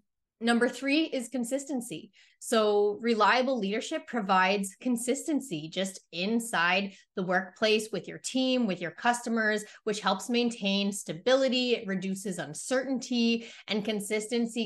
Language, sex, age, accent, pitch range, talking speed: English, female, 20-39, American, 190-230 Hz, 115 wpm